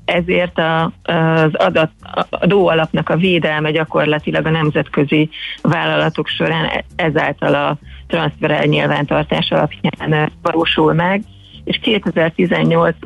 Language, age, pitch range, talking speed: Hungarian, 30-49, 155-180 Hz, 85 wpm